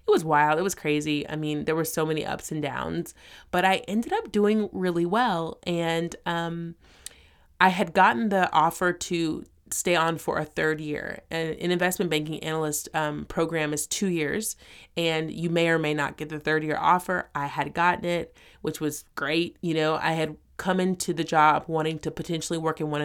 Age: 30-49